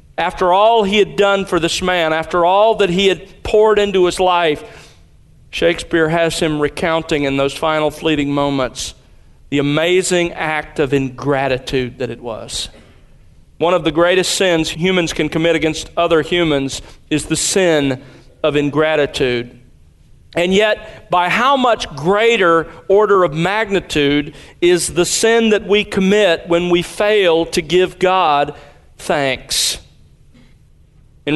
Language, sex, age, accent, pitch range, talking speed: English, male, 40-59, American, 155-195 Hz, 140 wpm